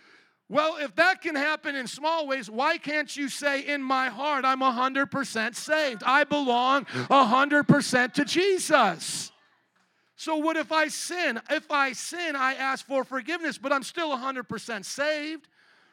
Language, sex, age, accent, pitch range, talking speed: English, male, 40-59, American, 220-285 Hz, 150 wpm